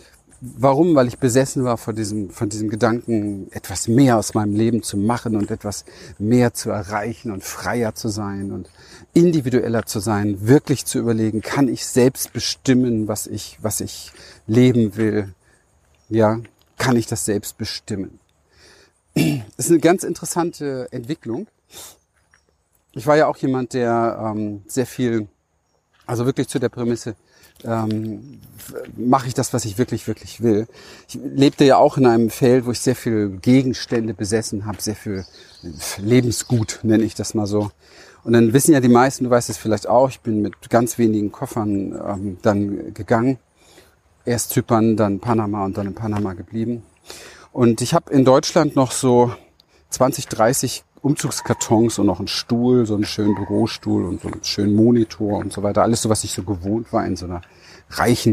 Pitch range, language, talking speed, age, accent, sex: 105-125 Hz, German, 170 wpm, 40-59, German, male